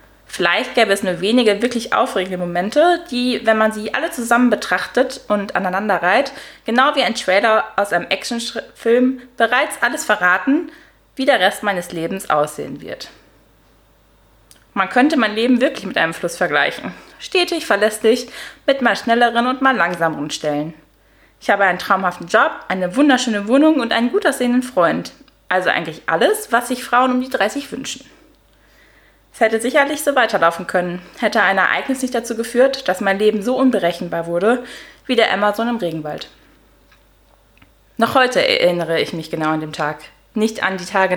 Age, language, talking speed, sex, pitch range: 20-39, German, 160 wpm, female, 180-245 Hz